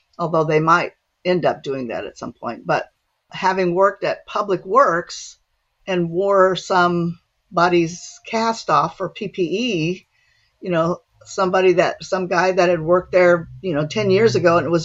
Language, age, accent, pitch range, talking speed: English, 50-69, American, 170-205 Hz, 165 wpm